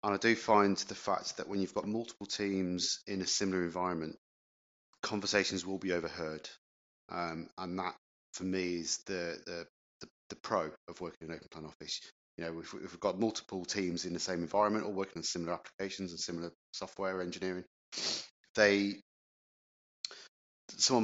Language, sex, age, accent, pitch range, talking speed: English, male, 30-49, British, 85-100 Hz, 170 wpm